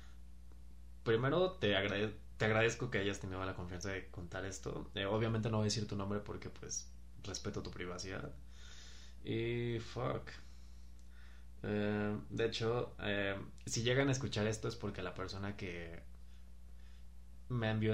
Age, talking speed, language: 20-39, 140 wpm, Spanish